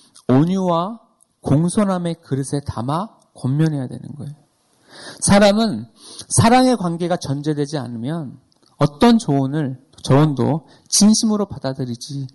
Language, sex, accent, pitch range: Korean, male, native, 135-190 Hz